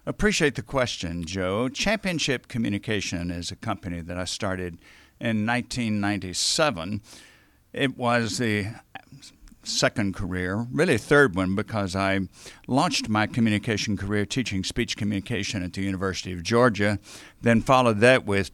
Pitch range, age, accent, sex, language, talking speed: 95-120 Hz, 50-69, American, male, English, 130 wpm